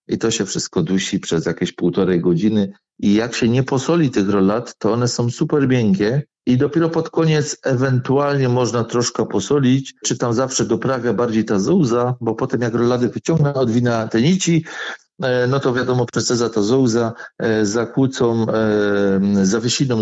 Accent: native